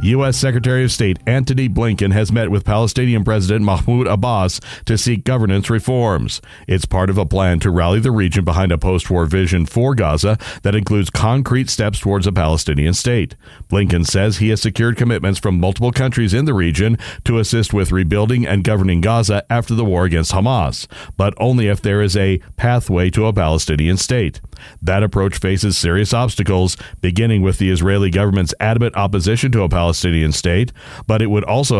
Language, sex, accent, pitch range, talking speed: English, male, American, 95-115 Hz, 185 wpm